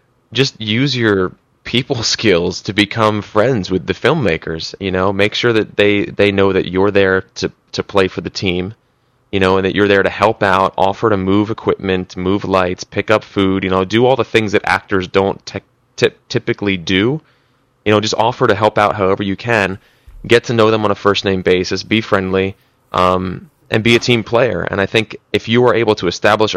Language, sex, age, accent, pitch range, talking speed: English, male, 20-39, American, 95-115 Hz, 215 wpm